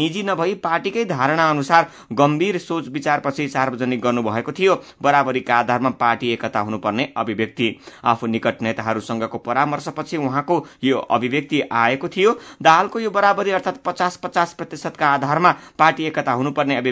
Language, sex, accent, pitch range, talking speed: German, male, Indian, 125-160 Hz, 130 wpm